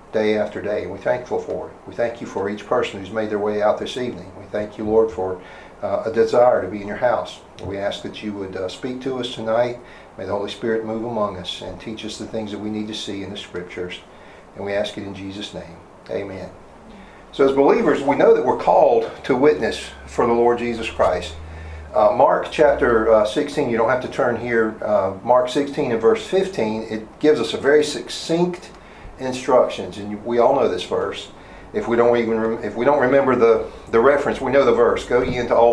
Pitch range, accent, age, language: 105-140 Hz, American, 50-69, English